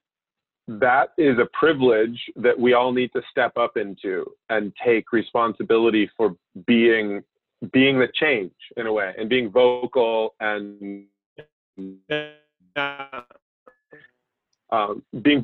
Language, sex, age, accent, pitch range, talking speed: English, male, 40-59, American, 130-180 Hz, 115 wpm